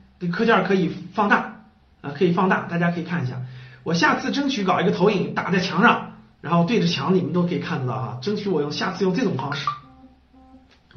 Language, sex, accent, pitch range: Chinese, male, native, 170-235 Hz